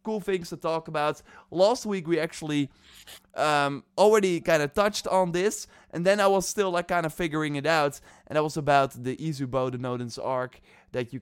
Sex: male